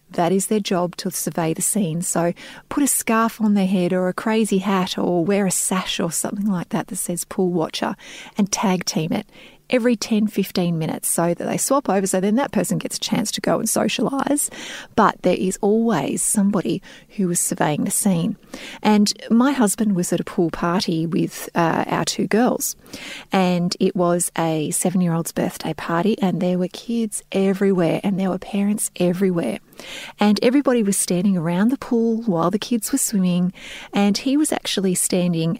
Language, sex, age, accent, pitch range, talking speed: English, female, 30-49, Australian, 180-230 Hz, 190 wpm